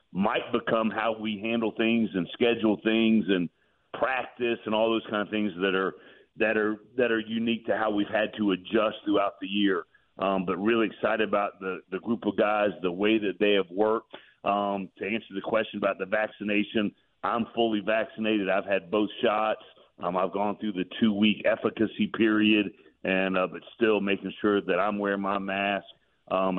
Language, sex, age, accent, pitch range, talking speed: English, male, 40-59, American, 95-105 Hz, 190 wpm